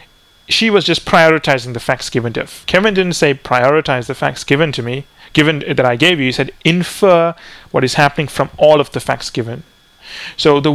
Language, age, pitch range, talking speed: English, 30-49, 130-160 Hz, 205 wpm